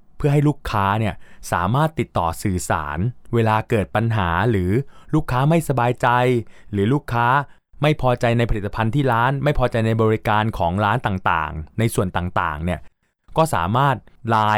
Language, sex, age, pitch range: Thai, male, 20-39, 95-125 Hz